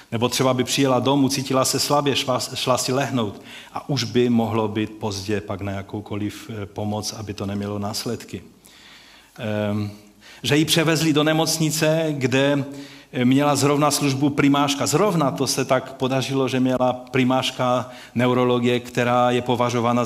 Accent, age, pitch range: native, 40-59, 115-140 Hz